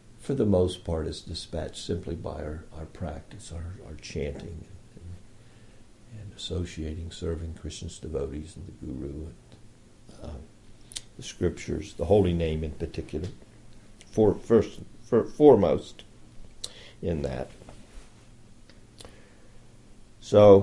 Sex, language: male, English